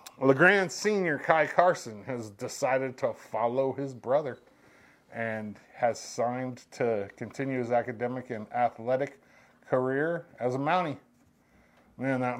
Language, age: English, 30-49